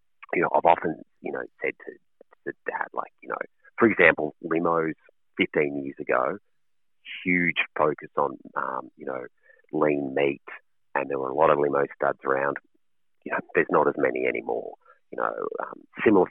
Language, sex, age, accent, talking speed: English, male, 30-49, Australian, 175 wpm